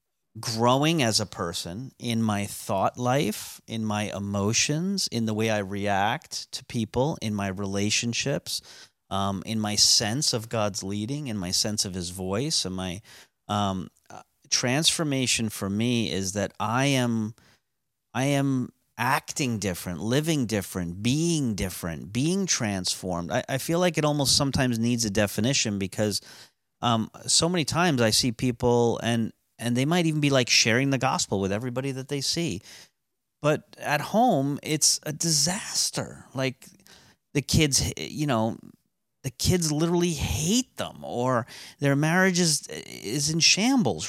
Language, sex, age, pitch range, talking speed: English, male, 40-59, 105-150 Hz, 150 wpm